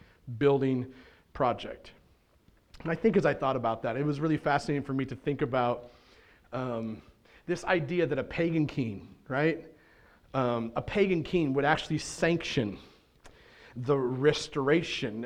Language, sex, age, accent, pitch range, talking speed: English, male, 40-59, American, 140-180 Hz, 140 wpm